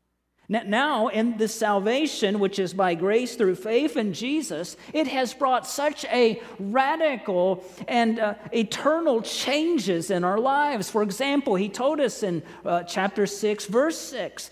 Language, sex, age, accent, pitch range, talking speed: English, male, 40-59, American, 185-275 Hz, 150 wpm